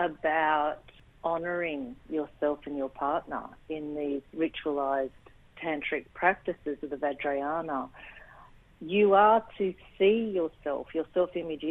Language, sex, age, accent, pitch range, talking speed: English, female, 50-69, Australian, 145-170 Hz, 110 wpm